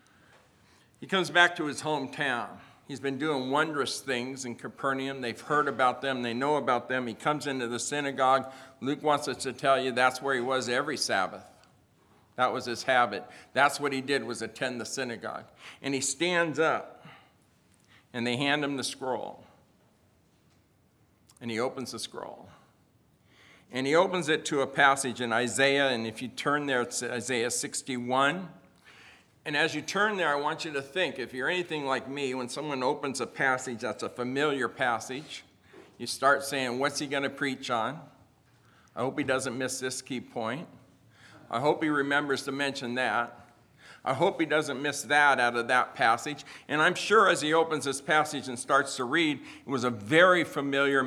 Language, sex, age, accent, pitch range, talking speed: English, male, 50-69, American, 125-145 Hz, 185 wpm